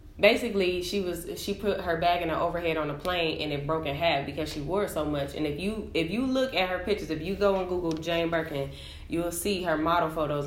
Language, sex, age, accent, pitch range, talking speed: English, female, 10-29, American, 140-175 Hz, 250 wpm